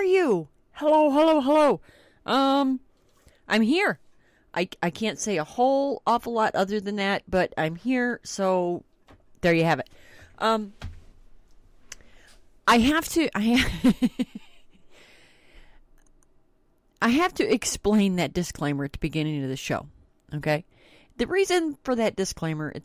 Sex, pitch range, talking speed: female, 155-235 Hz, 135 wpm